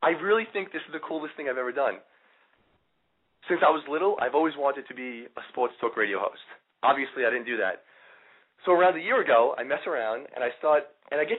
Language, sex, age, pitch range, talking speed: English, male, 30-49, 130-180 Hz, 230 wpm